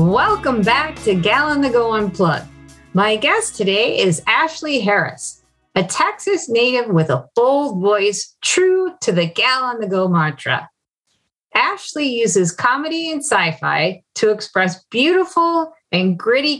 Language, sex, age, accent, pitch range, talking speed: English, female, 40-59, American, 175-255 Hz, 145 wpm